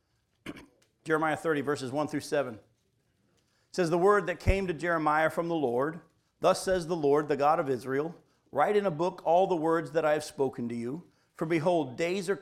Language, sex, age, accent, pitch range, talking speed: English, male, 50-69, American, 140-180 Hz, 200 wpm